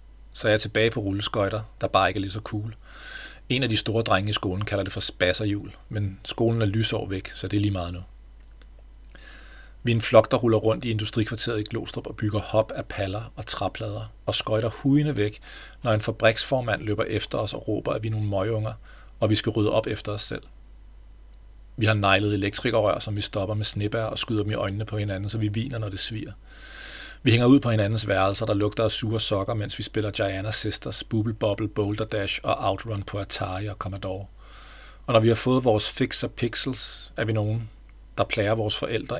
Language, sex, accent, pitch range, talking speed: Danish, male, native, 105-115 Hz, 215 wpm